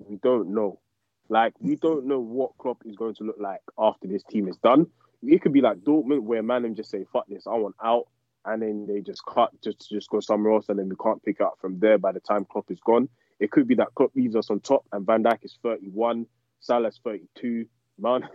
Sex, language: male, English